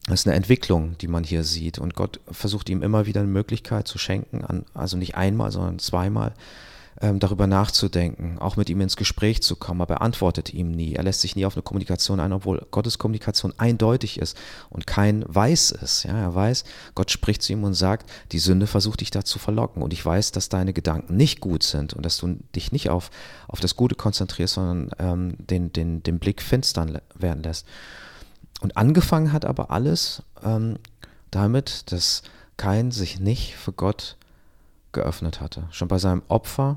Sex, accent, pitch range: male, German, 90-110 Hz